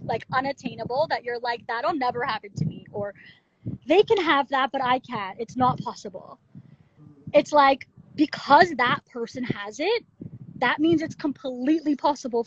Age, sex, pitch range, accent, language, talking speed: 20-39, female, 245-295 Hz, American, English, 160 wpm